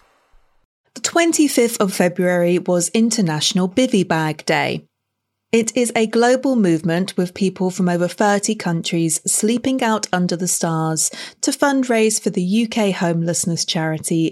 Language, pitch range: English, 170-220 Hz